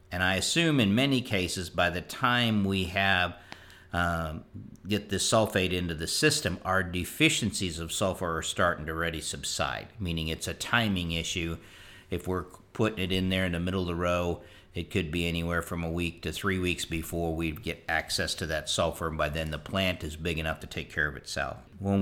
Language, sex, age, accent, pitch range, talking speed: English, male, 50-69, American, 85-100 Hz, 205 wpm